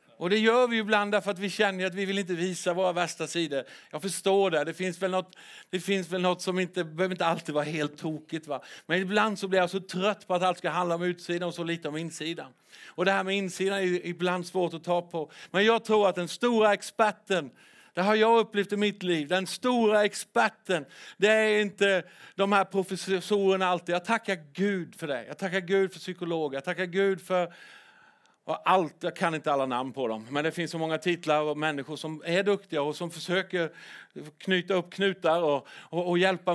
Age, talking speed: 50-69, 225 wpm